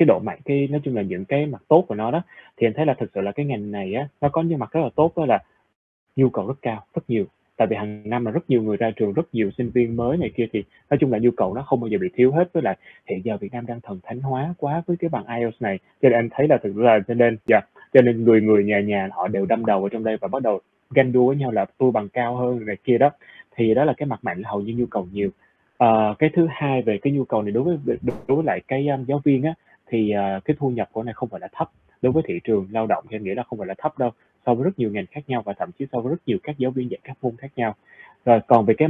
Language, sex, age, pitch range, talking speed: Vietnamese, male, 20-39, 110-145 Hz, 320 wpm